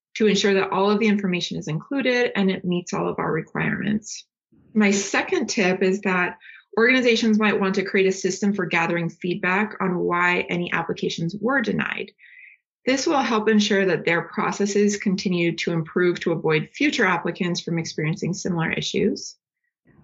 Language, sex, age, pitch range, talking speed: English, female, 30-49, 180-215 Hz, 165 wpm